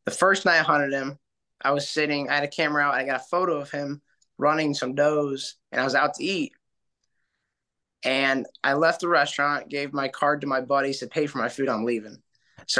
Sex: male